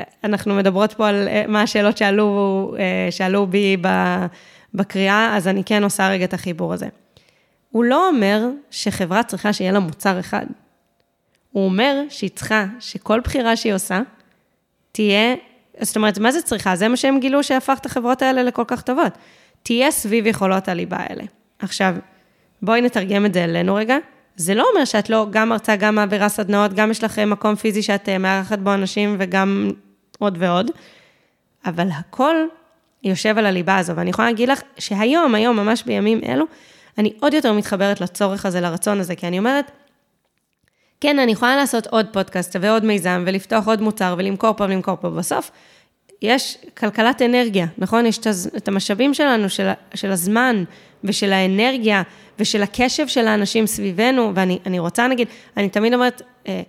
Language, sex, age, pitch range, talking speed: Hebrew, female, 20-39, 195-235 Hz, 160 wpm